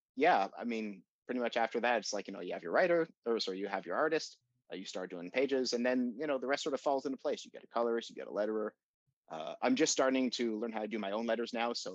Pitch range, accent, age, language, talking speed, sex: 105-140 Hz, American, 30-49, English, 295 wpm, male